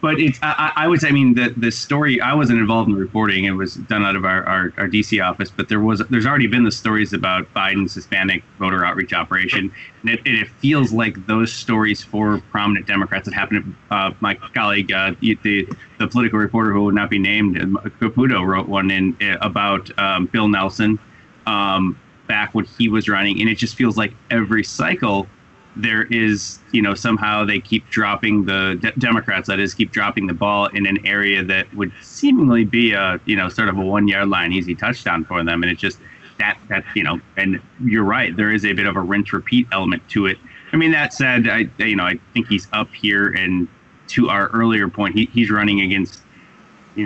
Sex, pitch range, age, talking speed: male, 95-115 Hz, 20-39, 215 wpm